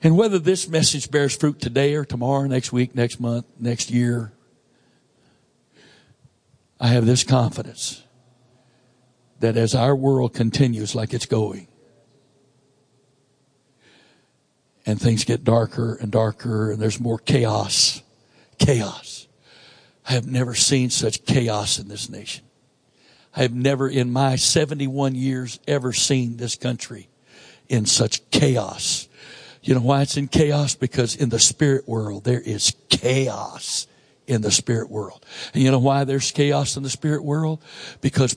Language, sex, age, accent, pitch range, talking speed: English, male, 60-79, American, 115-140 Hz, 140 wpm